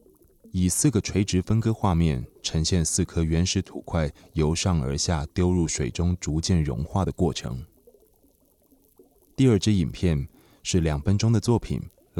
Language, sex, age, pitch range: Chinese, male, 20-39, 80-95 Hz